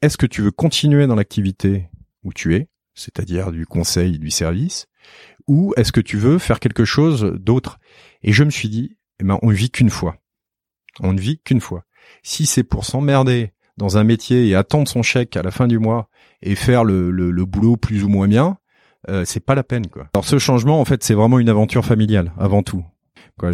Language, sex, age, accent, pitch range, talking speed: French, male, 30-49, French, 90-120 Hz, 215 wpm